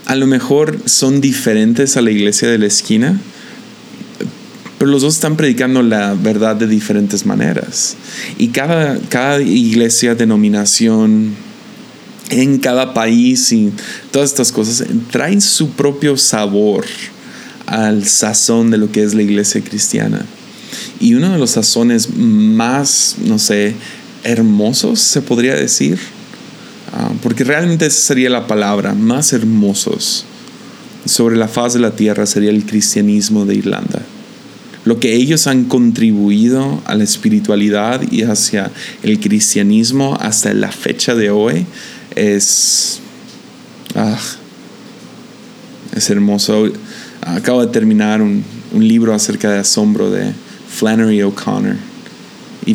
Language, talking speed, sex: Spanish, 125 wpm, male